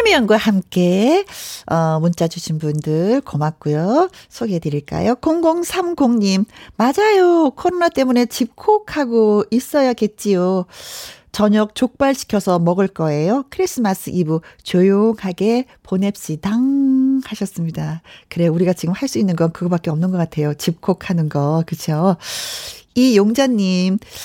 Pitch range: 185-260 Hz